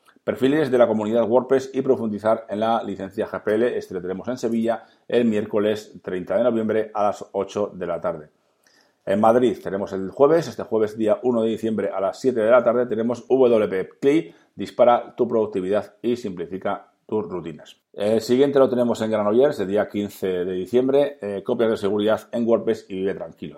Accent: Spanish